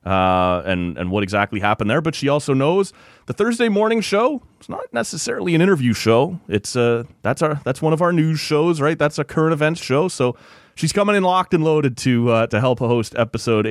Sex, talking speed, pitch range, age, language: male, 220 wpm, 85-120 Hz, 30-49, English